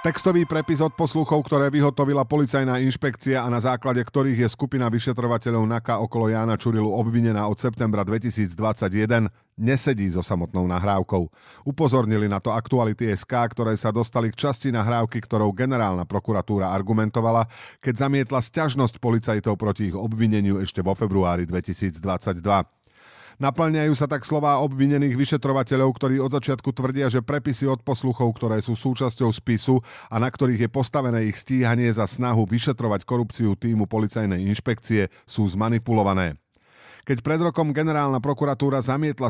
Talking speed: 140 wpm